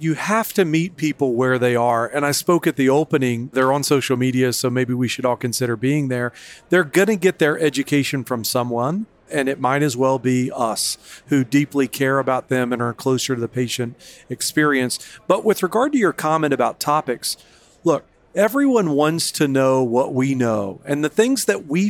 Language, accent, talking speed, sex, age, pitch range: English, American, 205 wpm, male, 40-59, 125-165 Hz